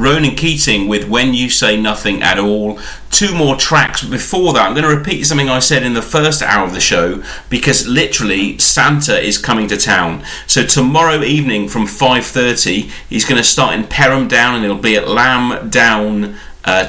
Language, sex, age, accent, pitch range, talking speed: English, male, 30-49, British, 105-145 Hz, 190 wpm